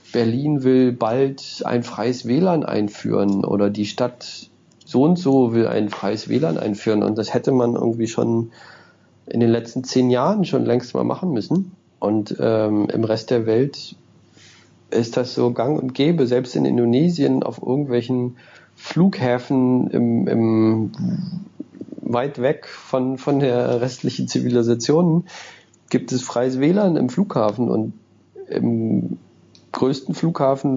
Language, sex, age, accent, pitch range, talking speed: German, male, 40-59, German, 110-130 Hz, 140 wpm